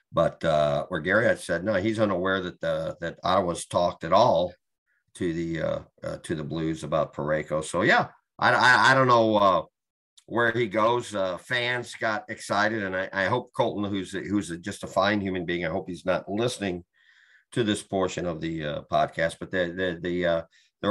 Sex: male